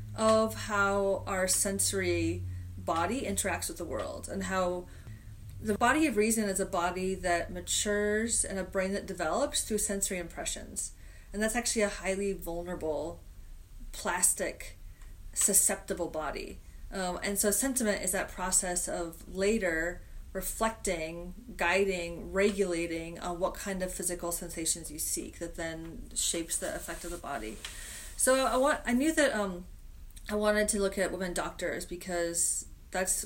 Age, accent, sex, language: 30-49, American, female, English